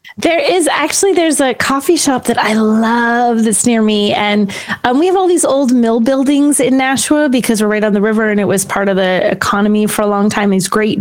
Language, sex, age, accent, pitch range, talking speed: English, female, 30-49, American, 205-250 Hz, 235 wpm